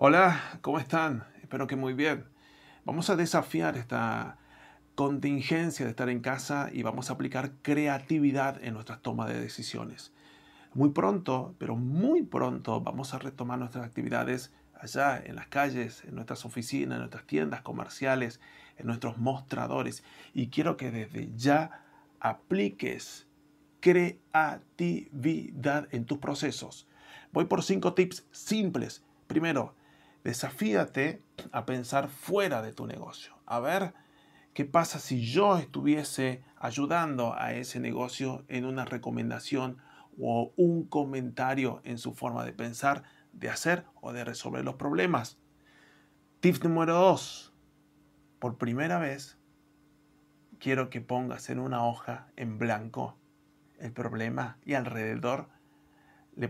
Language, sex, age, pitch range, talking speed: Spanish, male, 40-59, 120-150 Hz, 130 wpm